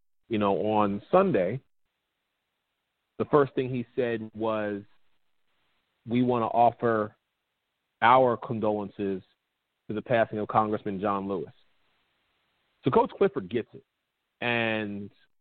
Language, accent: English, American